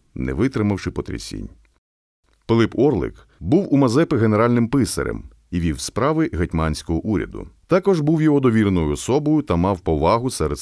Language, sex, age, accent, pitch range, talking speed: Ukrainian, male, 40-59, native, 85-135 Hz, 135 wpm